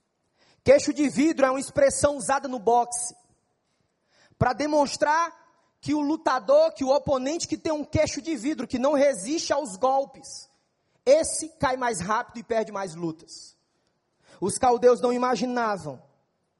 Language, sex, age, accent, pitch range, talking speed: English, male, 20-39, Brazilian, 235-290 Hz, 145 wpm